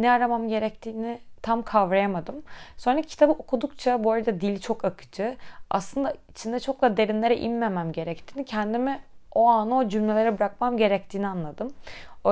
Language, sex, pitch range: Turkish, female, 180-225 Hz